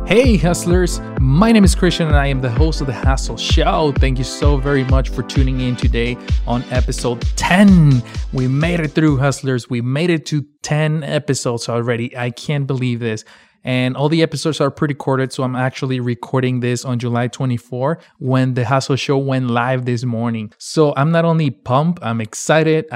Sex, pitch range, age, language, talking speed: male, 120-140 Hz, 20-39, English, 190 wpm